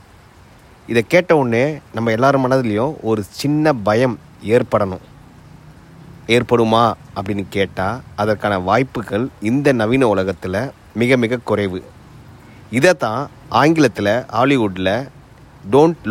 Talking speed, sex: 90 wpm, male